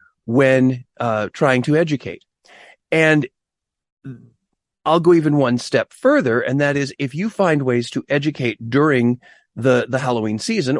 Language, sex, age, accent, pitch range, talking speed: English, male, 40-59, American, 110-155 Hz, 145 wpm